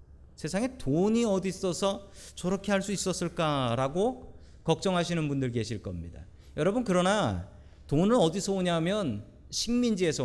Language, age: Korean, 40-59